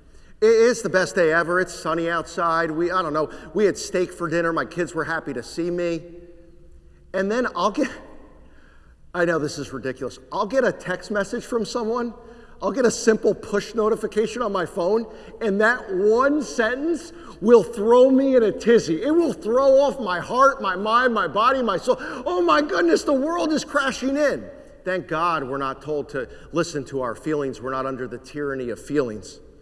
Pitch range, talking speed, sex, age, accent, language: 145-210 Hz, 195 wpm, male, 50-69, American, English